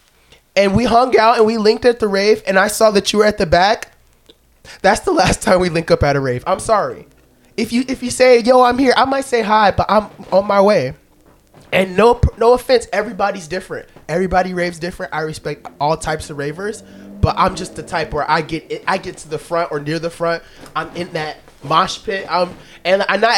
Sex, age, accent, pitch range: male, 20-39, American, 150-205 Hz